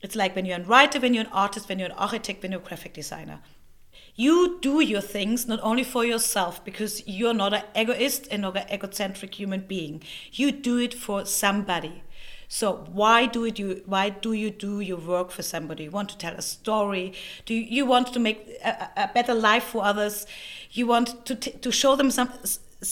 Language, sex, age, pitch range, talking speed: English, female, 30-49, 200-245 Hz, 215 wpm